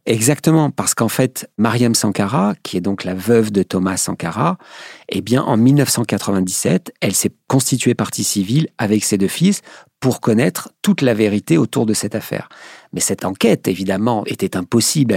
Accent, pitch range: French, 105-130 Hz